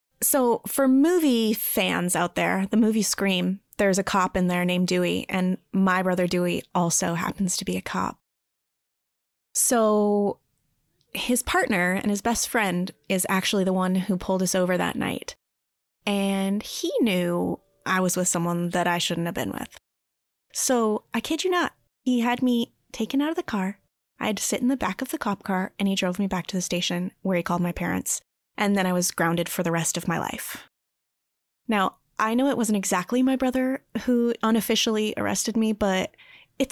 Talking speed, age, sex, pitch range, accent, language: 195 wpm, 20-39, female, 180-230 Hz, American, English